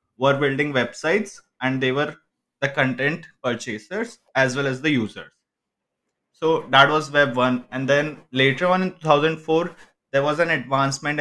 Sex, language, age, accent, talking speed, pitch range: male, English, 20-39, Indian, 155 wpm, 130-150 Hz